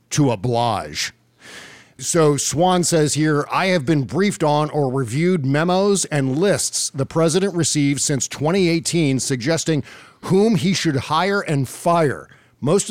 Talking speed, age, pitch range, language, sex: 135 wpm, 50-69, 130-170 Hz, English, male